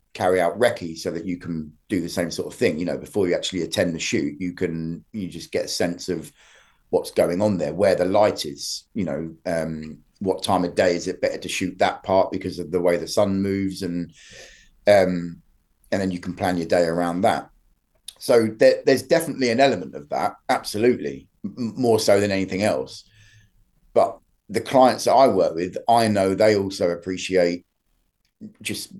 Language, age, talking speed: English, 30-49, 195 wpm